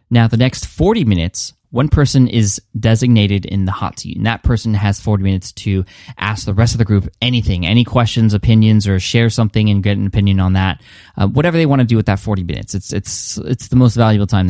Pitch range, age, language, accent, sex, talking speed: 95-120 Hz, 20-39, English, American, male, 230 wpm